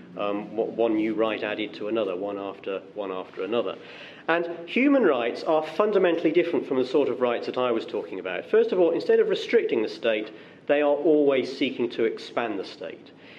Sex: male